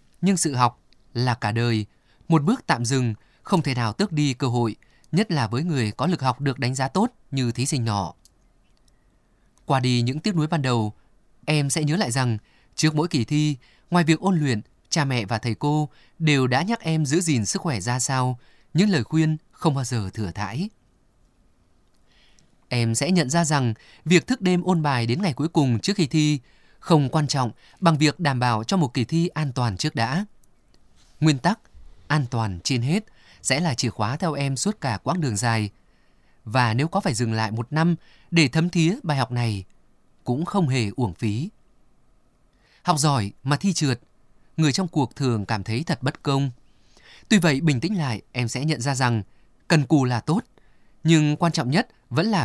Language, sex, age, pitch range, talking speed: Vietnamese, male, 20-39, 120-165 Hz, 200 wpm